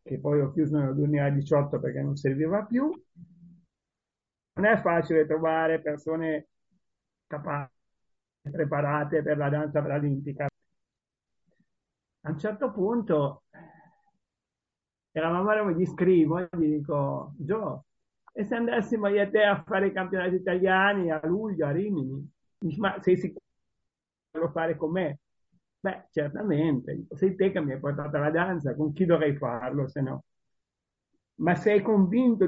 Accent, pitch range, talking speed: native, 150-185 Hz, 140 wpm